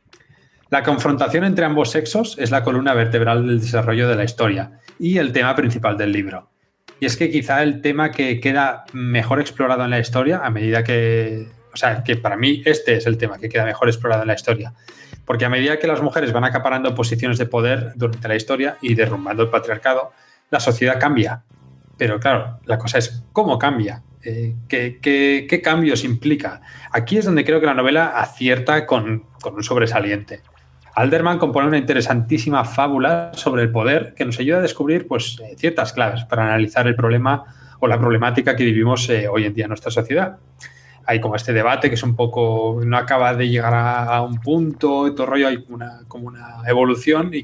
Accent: Spanish